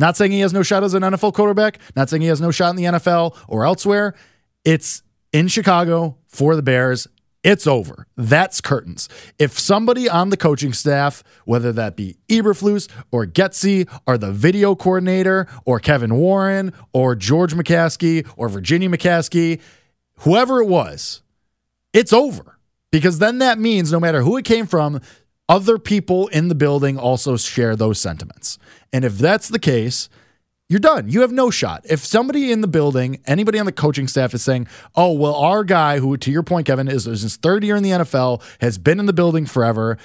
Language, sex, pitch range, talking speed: English, male, 130-190 Hz, 190 wpm